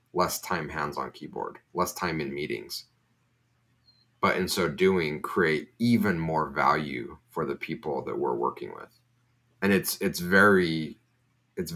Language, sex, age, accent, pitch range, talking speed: English, male, 30-49, American, 85-125 Hz, 145 wpm